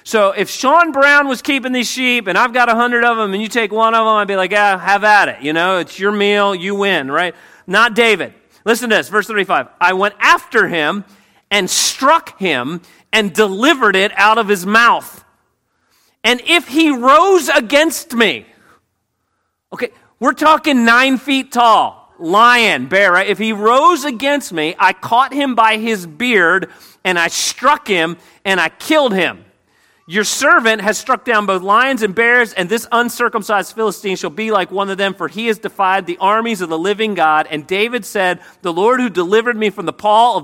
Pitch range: 195-245 Hz